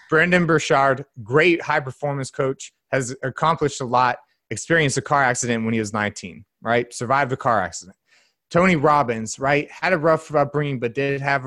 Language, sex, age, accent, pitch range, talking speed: English, male, 30-49, American, 120-145 Hz, 165 wpm